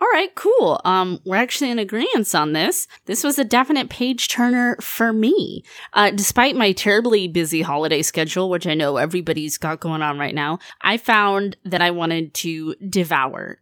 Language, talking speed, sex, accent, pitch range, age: English, 180 wpm, female, American, 170-225 Hz, 20-39